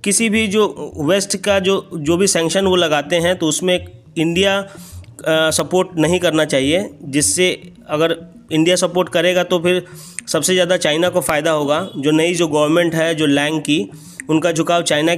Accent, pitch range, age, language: native, 155-185 Hz, 30-49, Hindi